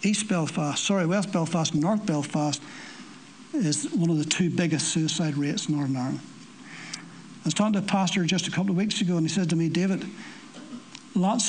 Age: 60-79